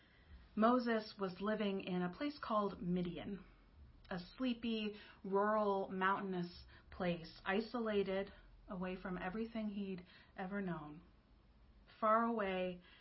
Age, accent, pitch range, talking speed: 30-49, American, 175-210 Hz, 100 wpm